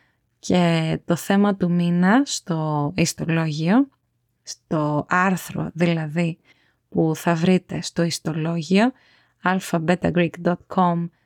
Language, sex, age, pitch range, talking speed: Greek, female, 20-39, 170-200 Hz, 85 wpm